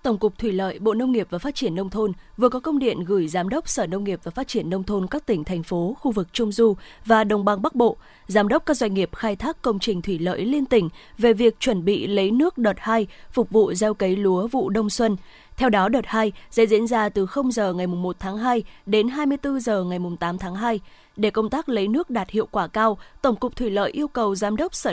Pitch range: 195-250 Hz